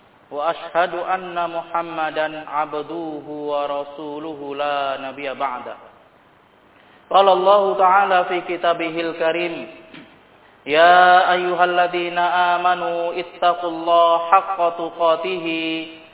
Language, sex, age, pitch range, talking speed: Indonesian, male, 20-39, 165-185 Hz, 75 wpm